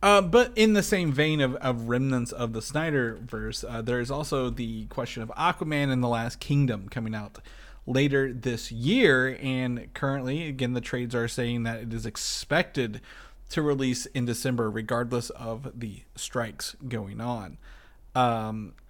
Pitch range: 115-135 Hz